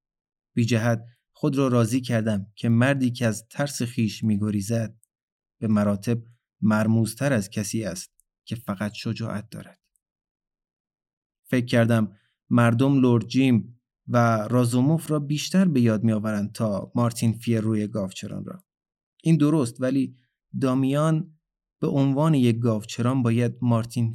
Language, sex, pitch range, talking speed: Persian, male, 110-130 Hz, 120 wpm